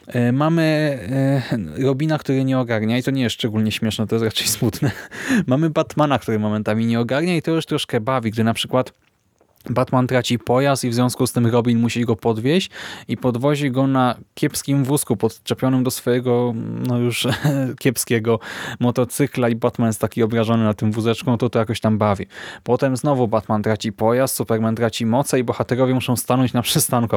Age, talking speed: 20-39, 180 wpm